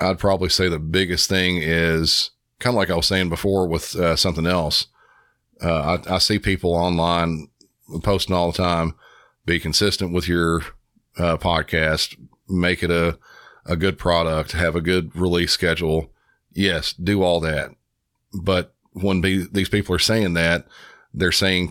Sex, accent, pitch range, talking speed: male, American, 80-95 Hz, 160 wpm